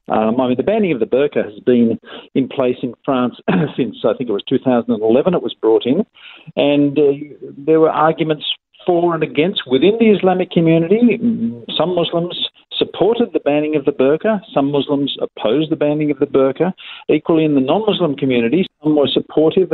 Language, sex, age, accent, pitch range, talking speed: English, male, 50-69, Australian, 120-185 Hz, 180 wpm